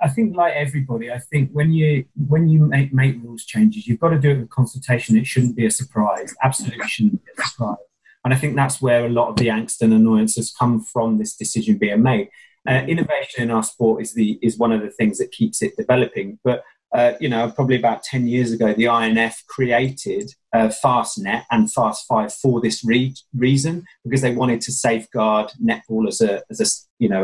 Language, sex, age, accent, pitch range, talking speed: English, male, 30-49, British, 115-140 Hz, 220 wpm